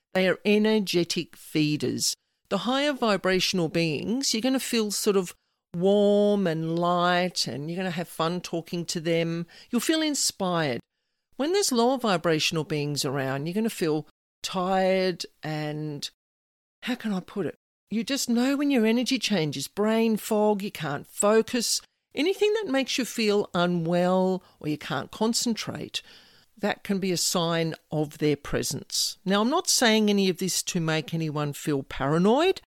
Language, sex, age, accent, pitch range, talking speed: English, female, 50-69, Australian, 155-220 Hz, 160 wpm